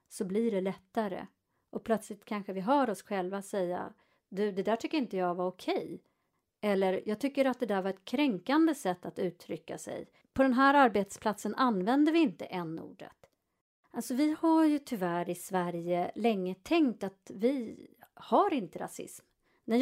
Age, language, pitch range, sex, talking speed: 30-49, Swedish, 190-280 Hz, female, 175 wpm